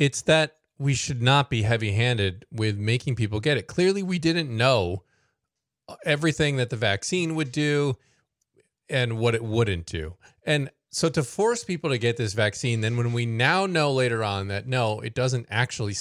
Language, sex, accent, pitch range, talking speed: English, male, American, 105-145 Hz, 180 wpm